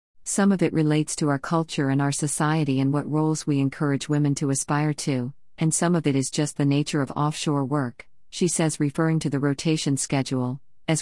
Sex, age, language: female, 50-69, English